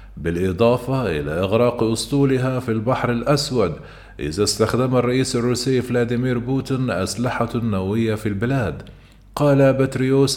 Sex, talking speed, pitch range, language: male, 110 wpm, 115-130 Hz, Arabic